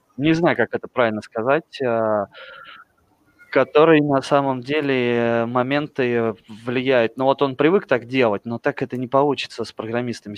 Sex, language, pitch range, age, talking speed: male, Russian, 110-135 Hz, 20-39, 145 wpm